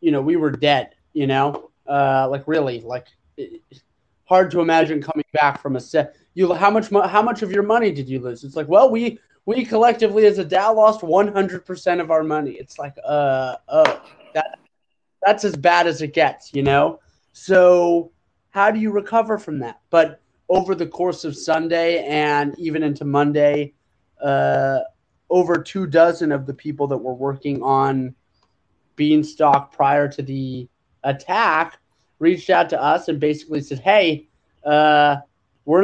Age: 30-49